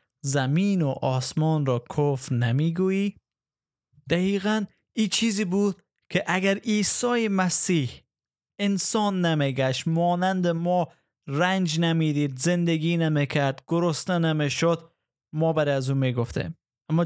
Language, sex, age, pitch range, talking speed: Persian, male, 20-39, 145-175 Hz, 120 wpm